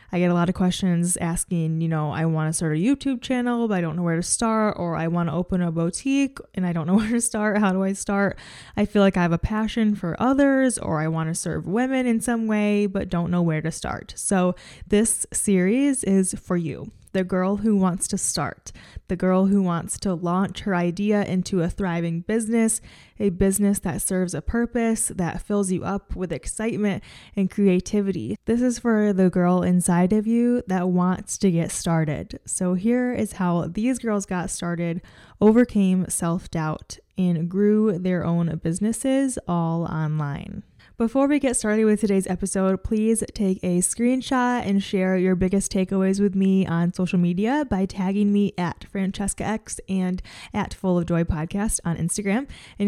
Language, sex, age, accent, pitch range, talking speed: English, female, 20-39, American, 175-215 Hz, 190 wpm